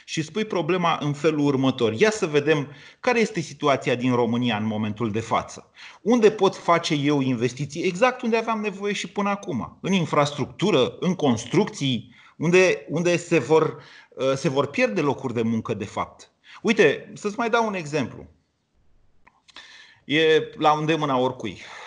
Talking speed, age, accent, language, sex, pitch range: 150 wpm, 30-49, native, Romanian, male, 130-195 Hz